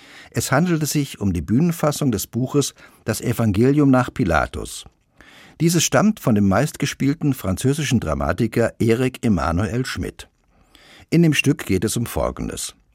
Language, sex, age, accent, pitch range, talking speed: German, male, 60-79, German, 100-140 Hz, 135 wpm